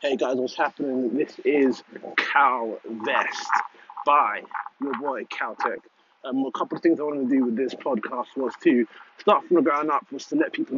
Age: 20-39